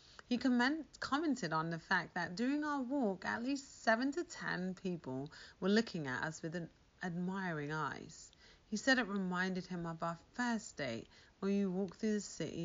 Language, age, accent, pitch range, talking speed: English, 30-49, British, 160-235 Hz, 185 wpm